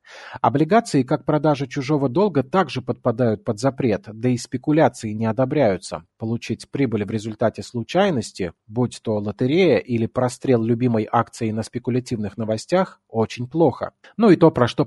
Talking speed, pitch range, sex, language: 145 wpm, 115-150 Hz, male, Russian